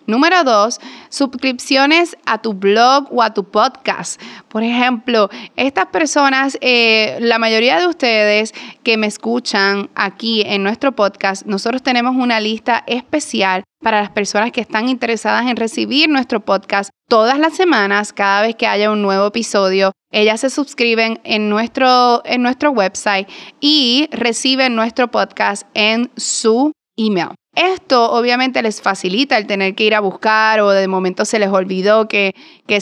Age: 20-39